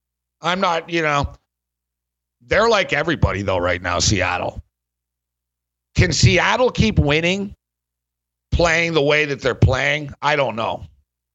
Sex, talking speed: male, 125 wpm